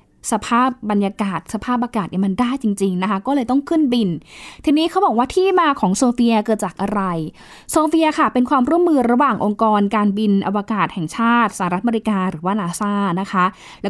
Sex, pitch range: female, 205-265 Hz